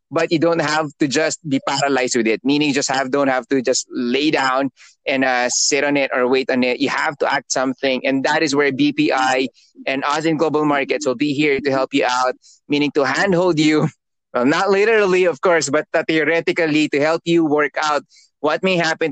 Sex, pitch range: male, 140-170 Hz